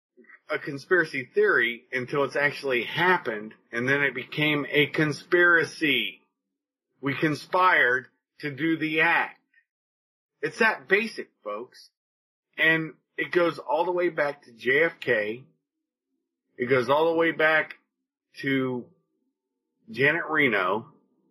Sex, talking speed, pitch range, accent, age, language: male, 115 wpm, 135-190 Hz, American, 40-59, English